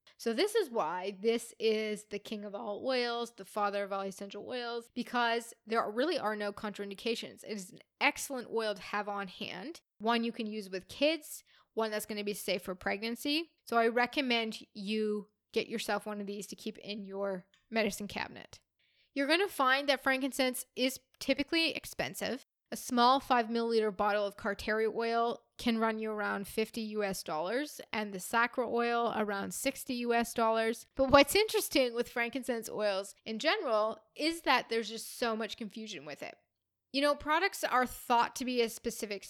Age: 10-29